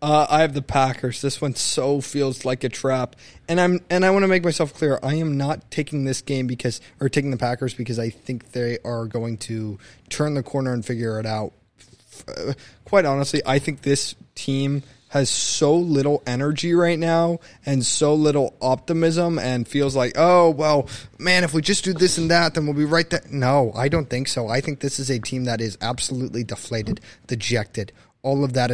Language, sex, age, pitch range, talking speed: English, male, 20-39, 120-165 Hz, 205 wpm